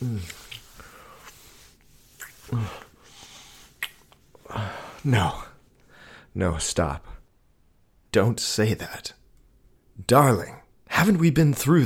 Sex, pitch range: male, 90-120 Hz